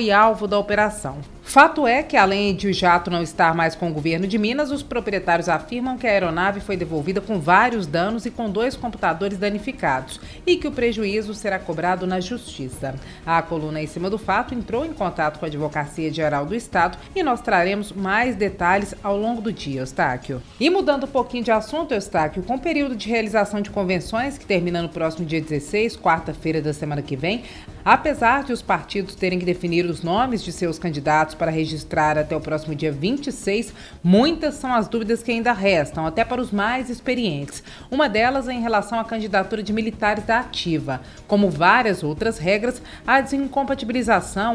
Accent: Brazilian